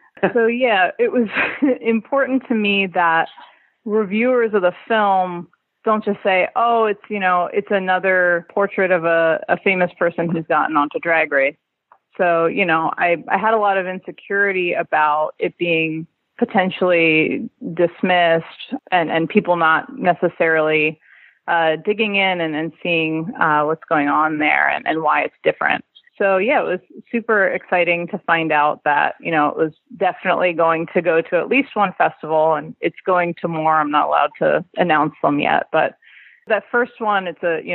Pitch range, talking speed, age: 165-205 Hz, 175 wpm, 30-49